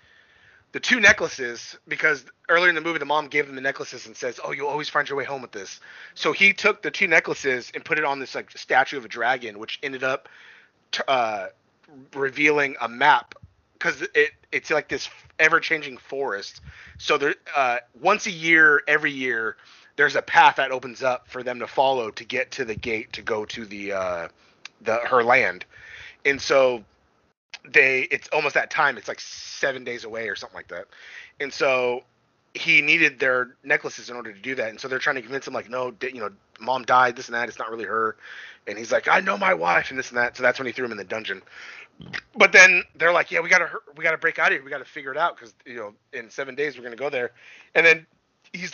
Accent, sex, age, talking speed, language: American, male, 30-49, 230 wpm, English